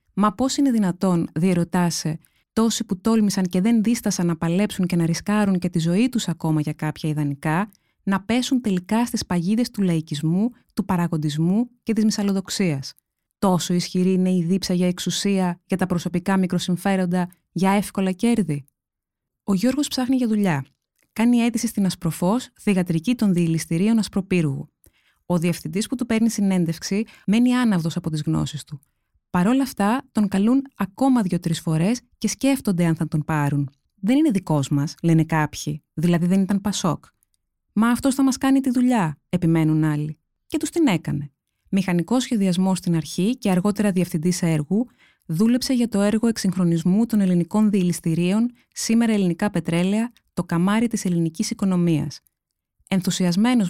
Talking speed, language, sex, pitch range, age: 155 wpm, Greek, female, 165-220 Hz, 20-39